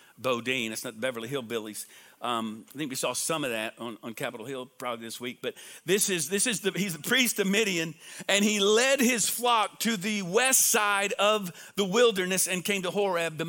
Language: English